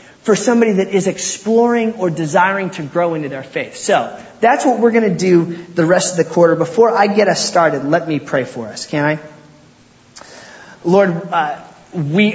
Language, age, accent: English, 30-49, American